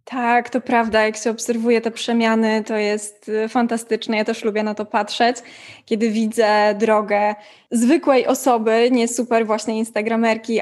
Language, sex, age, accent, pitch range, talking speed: Polish, female, 20-39, native, 220-260 Hz, 145 wpm